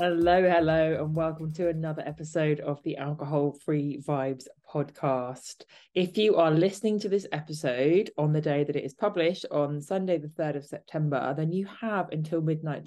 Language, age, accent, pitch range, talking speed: English, 20-39, British, 140-170 Hz, 175 wpm